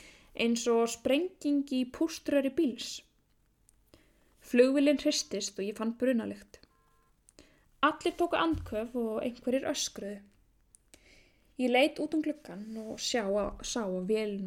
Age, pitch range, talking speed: 10-29, 215-270 Hz, 115 wpm